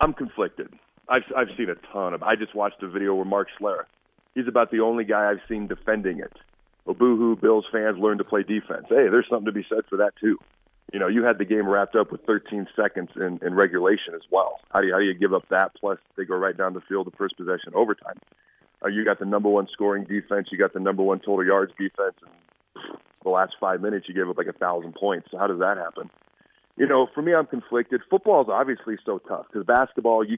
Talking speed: 240 wpm